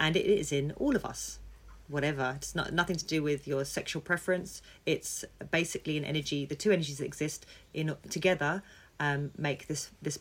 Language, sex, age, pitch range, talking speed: English, female, 30-49, 135-155 Hz, 190 wpm